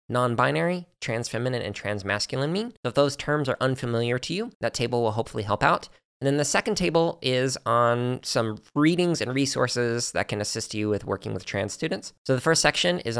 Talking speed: 195 wpm